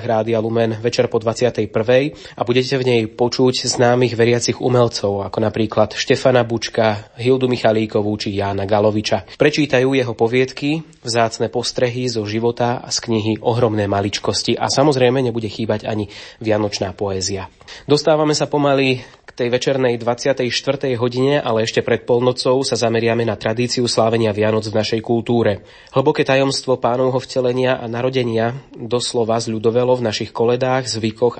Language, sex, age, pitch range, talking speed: Slovak, male, 20-39, 110-125 Hz, 140 wpm